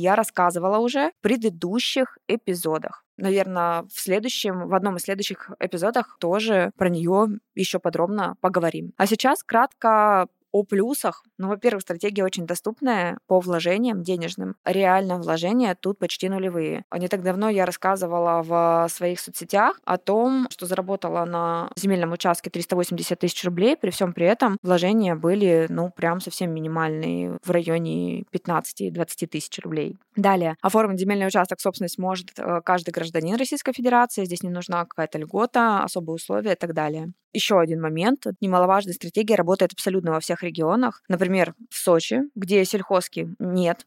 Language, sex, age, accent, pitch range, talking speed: Russian, female, 20-39, native, 170-205 Hz, 145 wpm